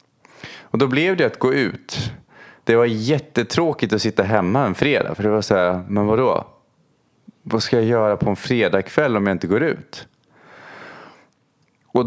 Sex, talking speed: male, 170 wpm